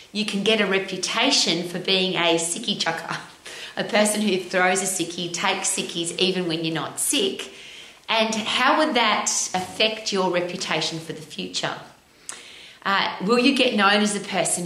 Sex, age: female, 30-49